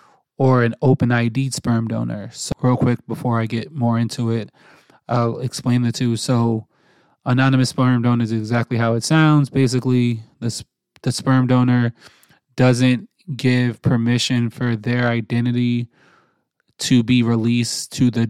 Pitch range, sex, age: 120-130 Hz, male, 20-39